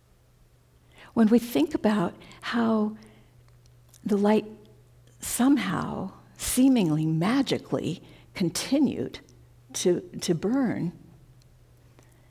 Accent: American